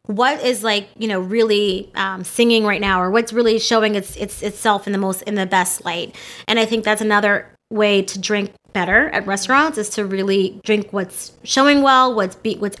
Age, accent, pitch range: 20-39, American, 195-235 Hz